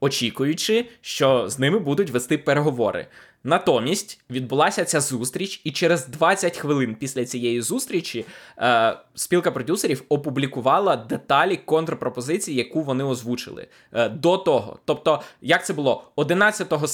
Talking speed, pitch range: 125 wpm, 130-175 Hz